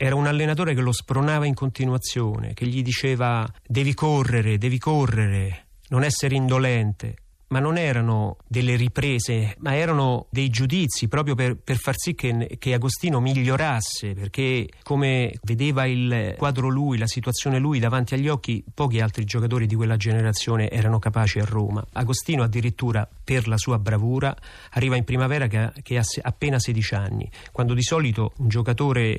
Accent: native